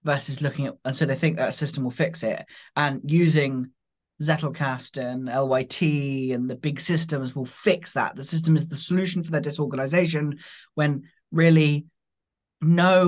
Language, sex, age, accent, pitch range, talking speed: English, male, 20-39, British, 145-180 Hz, 165 wpm